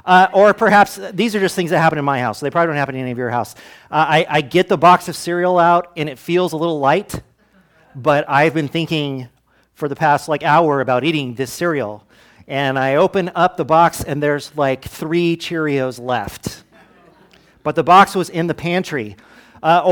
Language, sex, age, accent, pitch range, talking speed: English, male, 40-59, American, 145-190 Hz, 210 wpm